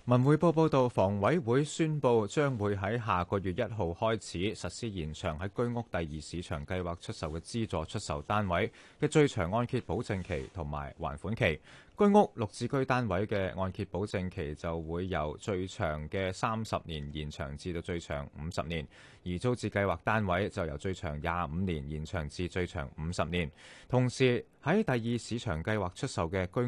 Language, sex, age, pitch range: Chinese, male, 30-49, 85-110 Hz